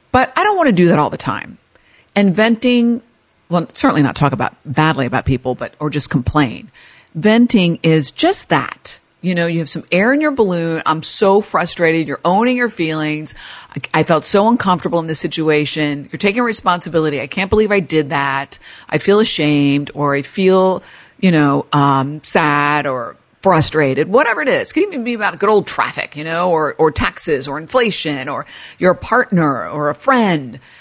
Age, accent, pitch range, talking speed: 50-69, American, 145-195 Hz, 190 wpm